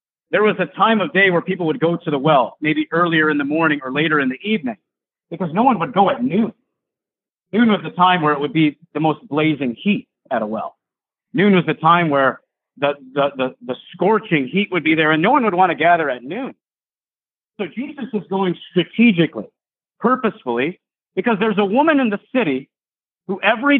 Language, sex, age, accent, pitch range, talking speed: English, male, 40-59, American, 155-215 Hz, 210 wpm